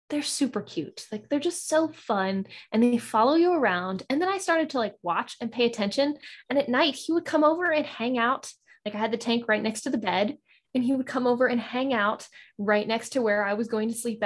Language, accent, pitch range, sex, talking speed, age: English, American, 210-275 Hz, female, 255 wpm, 10-29